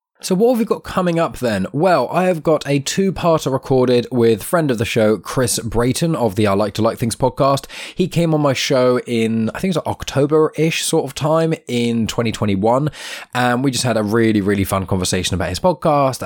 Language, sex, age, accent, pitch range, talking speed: English, male, 20-39, British, 100-130 Hz, 210 wpm